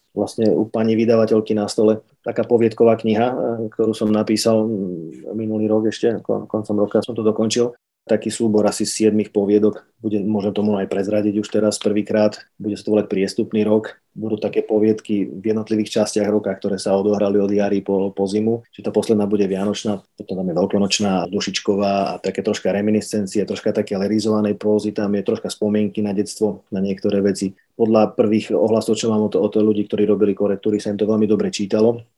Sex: male